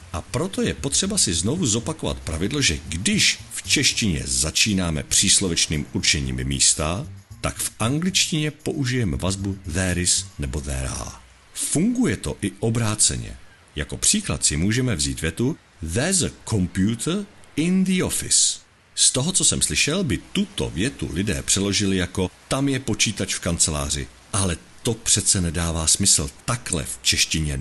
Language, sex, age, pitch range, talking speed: Czech, male, 50-69, 80-125 Hz, 145 wpm